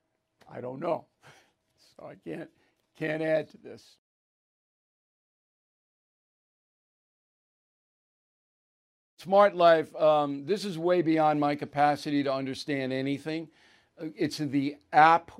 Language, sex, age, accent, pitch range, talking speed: English, male, 60-79, American, 145-170 Hz, 100 wpm